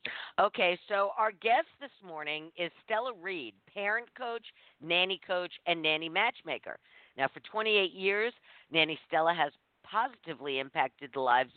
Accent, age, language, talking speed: American, 50-69, English, 140 wpm